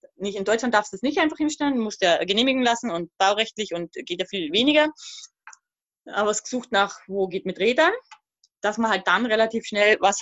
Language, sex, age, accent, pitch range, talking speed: German, female, 20-39, German, 205-295 Hz, 210 wpm